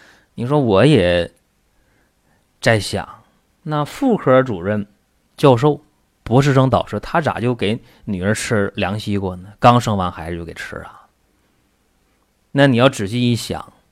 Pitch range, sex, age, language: 90-140 Hz, male, 30-49, Chinese